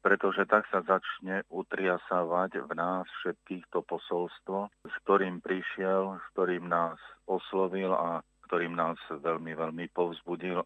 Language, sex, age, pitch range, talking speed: Slovak, male, 40-59, 85-95 Hz, 130 wpm